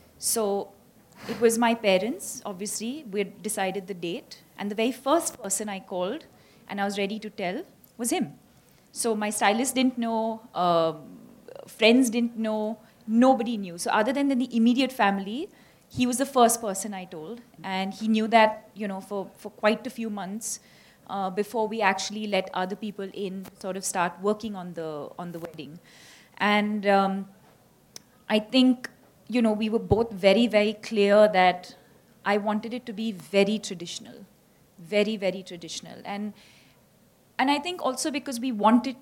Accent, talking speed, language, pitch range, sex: Indian, 170 wpm, English, 195-240 Hz, female